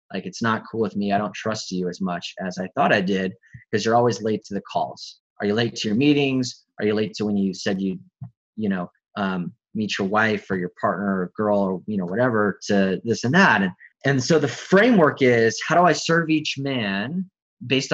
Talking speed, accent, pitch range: 235 wpm, American, 105-145 Hz